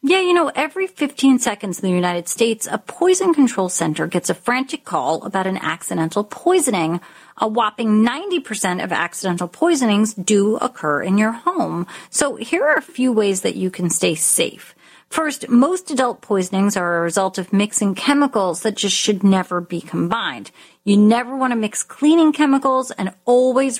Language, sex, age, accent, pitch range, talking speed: English, female, 40-59, American, 190-260 Hz, 175 wpm